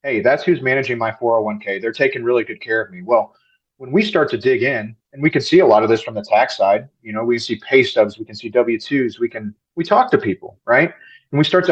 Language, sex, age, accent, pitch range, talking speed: English, male, 30-49, American, 110-150 Hz, 270 wpm